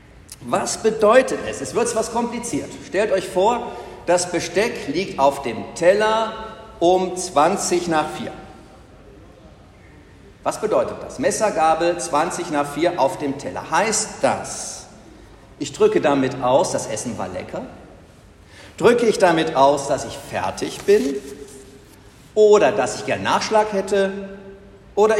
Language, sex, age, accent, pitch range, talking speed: German, male, 60-79, German, 115-195 Hz, 130 wpm